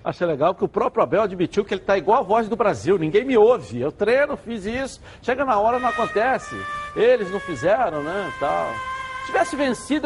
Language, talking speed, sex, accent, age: Portuguese, 215 wpm, male, Brazilian, 60-79